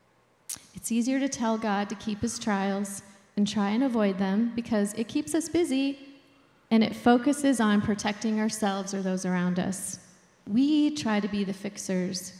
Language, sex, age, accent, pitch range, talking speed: English, female, 30-49, American, 200-245 Hz, 170 wpm